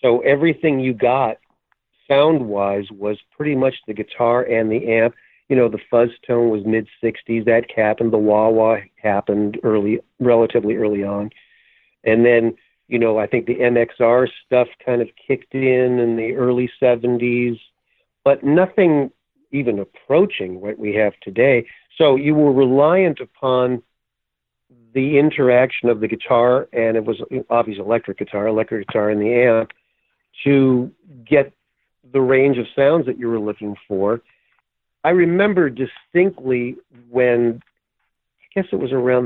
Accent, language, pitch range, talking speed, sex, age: American, English, 110-130 Hz, 145 wpm, male, 50-69